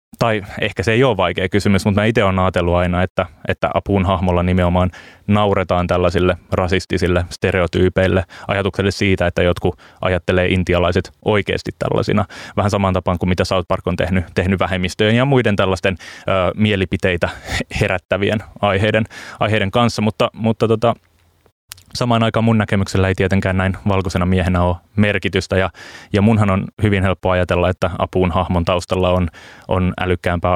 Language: Finnish